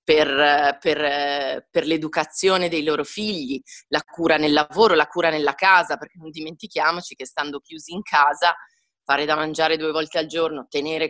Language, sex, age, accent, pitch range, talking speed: Italian, female, 30-49, native, 150-185 Hz, 160 wpm